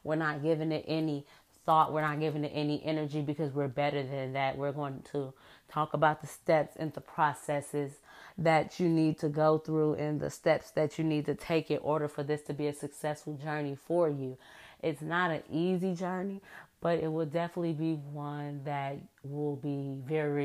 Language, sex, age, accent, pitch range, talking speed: English, female, 30-49, American, 145-160 Hz, 195 wpm